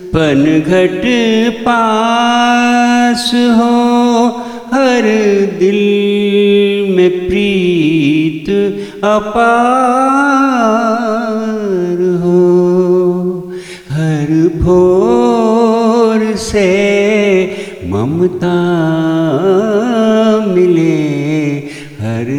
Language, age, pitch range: Hindi, 50-69, 155-225 Hz